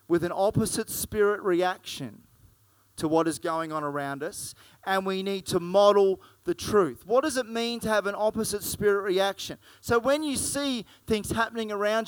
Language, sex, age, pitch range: English, male, 30-49, 190-225 Hz